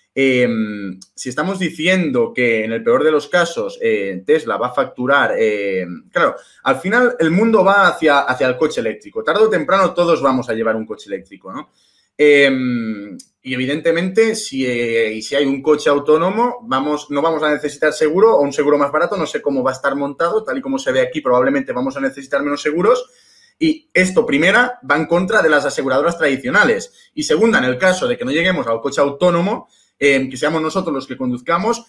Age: 30-49